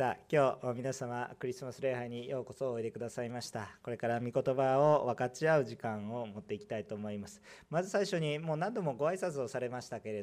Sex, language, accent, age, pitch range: male, Japanese, native, 40-59, 120-175 Hz